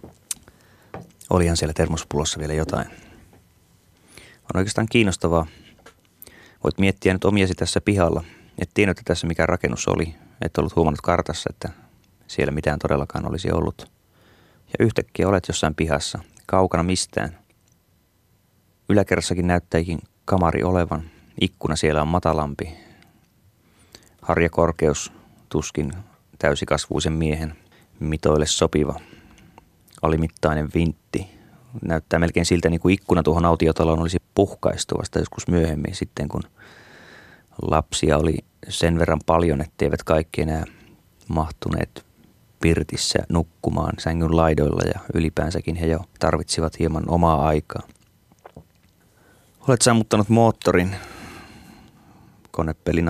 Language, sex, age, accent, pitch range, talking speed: Finnish, male, 30-49, native, 80-95 Hz, 105 wpm